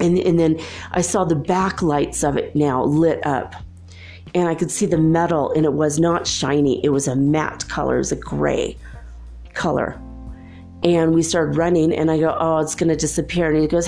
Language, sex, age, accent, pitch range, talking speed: English, female, 30-49, American, 145-175 Hz, 210 wpm